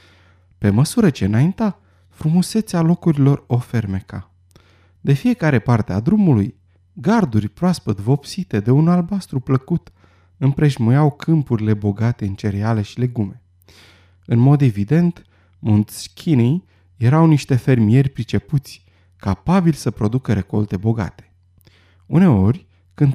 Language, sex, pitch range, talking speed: Romanian, male, 95-145 Hz, 110 wpm